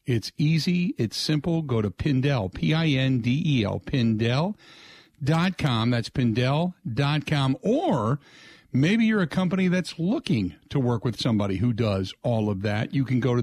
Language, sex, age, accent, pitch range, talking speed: English, male, 50-69, American, 120-175 Hz, 140 wpm